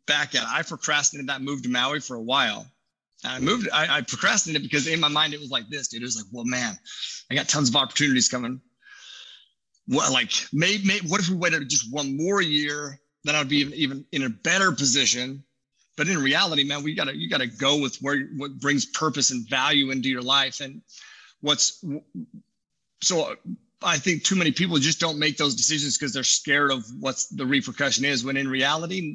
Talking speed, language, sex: 210 wpm, English, male